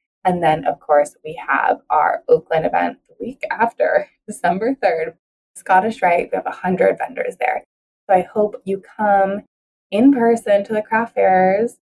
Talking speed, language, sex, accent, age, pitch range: 160 wpm, English, female, American, 20-39, 185-255 Hz